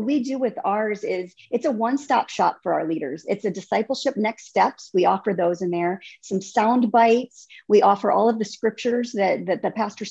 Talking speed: 210 wpm